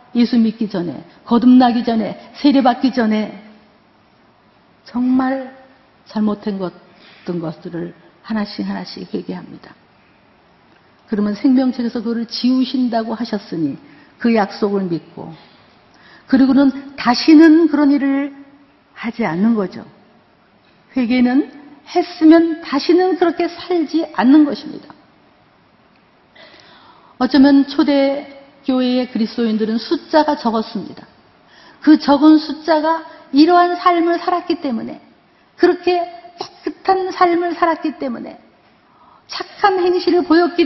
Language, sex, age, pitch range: Korean, female, 50-69, 225-315 Hz